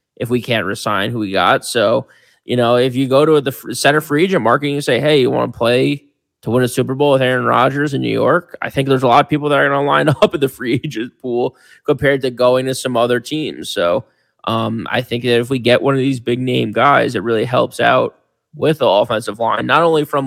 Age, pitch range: 20-39, 120-145 Hz